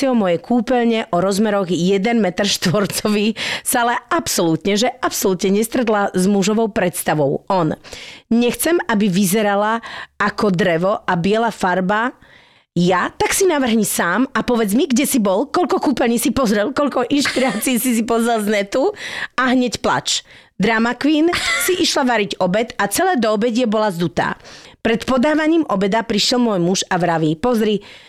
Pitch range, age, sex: 195-250 Hz, 30-49, female